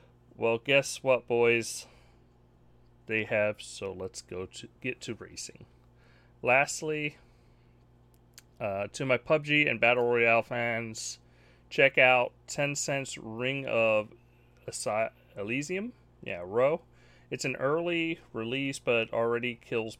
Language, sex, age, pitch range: English, male, 30-49, 105-130 Hz